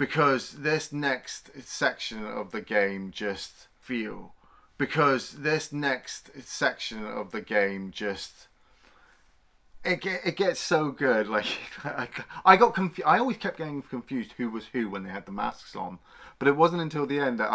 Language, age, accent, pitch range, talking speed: English, 30-49, British, 110-145 Hz, 160 wpm